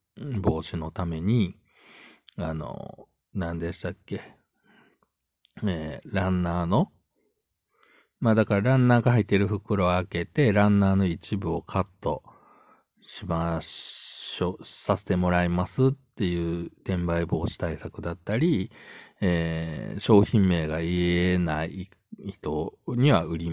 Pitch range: 85-105 Hz